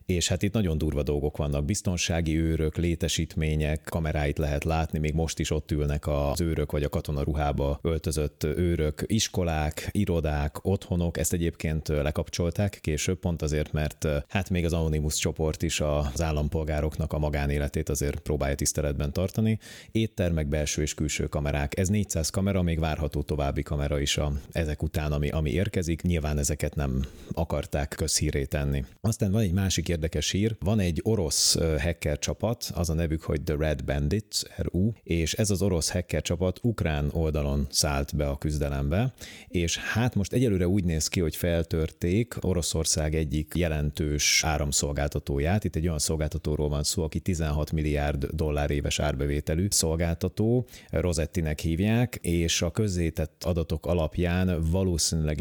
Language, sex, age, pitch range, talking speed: Hungarian, male, 30-49, 75-90 Hz, 145 wpm